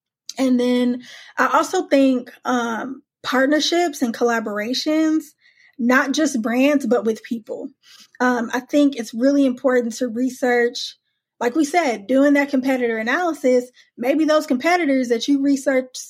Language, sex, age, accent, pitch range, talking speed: English, female, 20-39, American, 235-275 Hz, 135 wpm